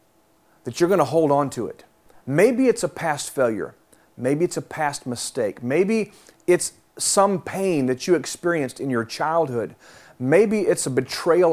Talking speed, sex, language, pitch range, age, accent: 160 wpm, male, English, 135-195 Hz, 40-59, American